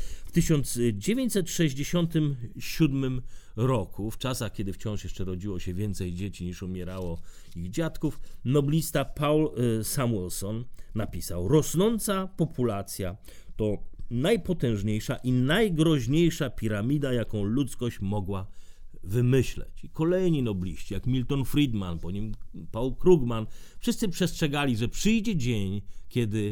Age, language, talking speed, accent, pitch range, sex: 40-59, Polish, 105 wpm, native, 100-145 Hz, male